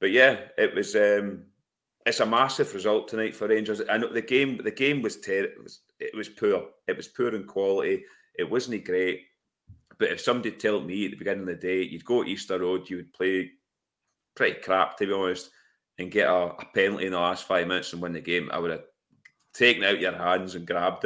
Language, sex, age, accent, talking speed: English, male, 40-59, British, 230 wpm